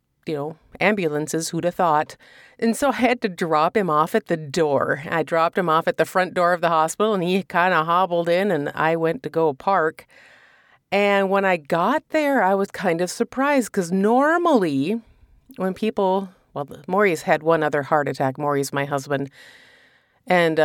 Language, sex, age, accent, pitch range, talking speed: English, female, 40-59, American, 160-225 Hz, 190 wpm